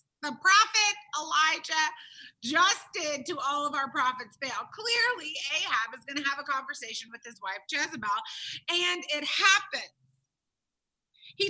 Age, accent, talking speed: 30-49, American, 140 wpm